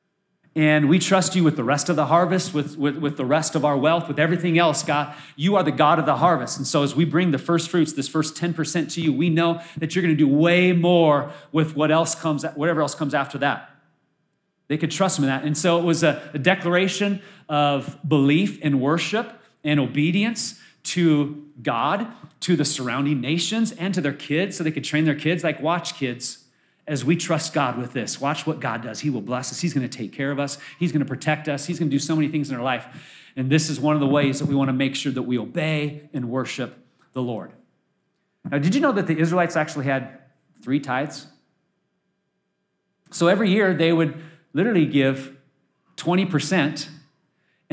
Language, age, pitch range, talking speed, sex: English, 30-49, 145-170 Hz, 210 wpm, male